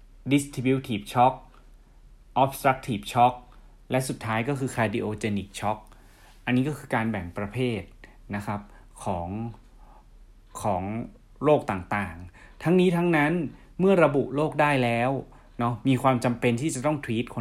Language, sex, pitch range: Thai, male, 110-135 Hz